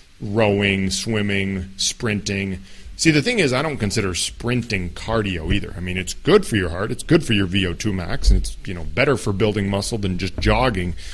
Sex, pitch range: male, 95-130 Hz